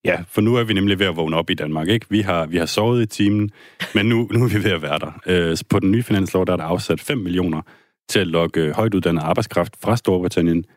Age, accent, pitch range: 30-49, native, 80-100 Hz